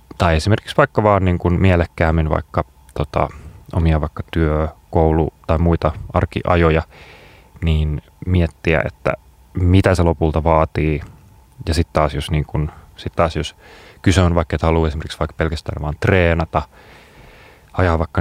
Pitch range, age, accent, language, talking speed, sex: 80-95 Hz, 30-49, native, Finnish, 140 wpm, male